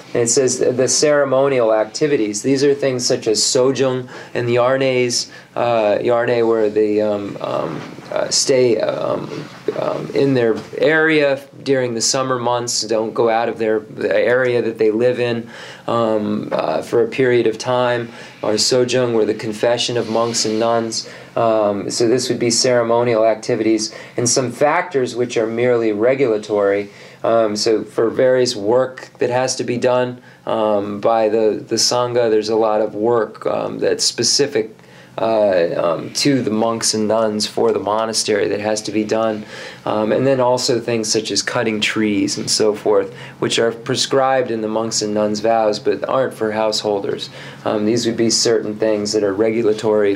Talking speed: 170 wpm